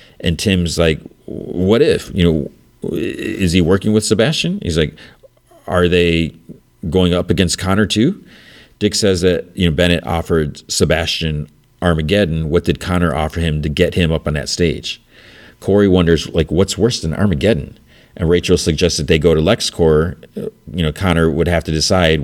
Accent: American